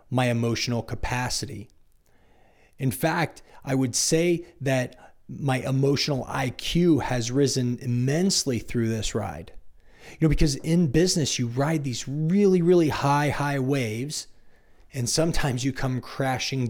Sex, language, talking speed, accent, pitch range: male, English, 130 wpm, American, 115-150 Hz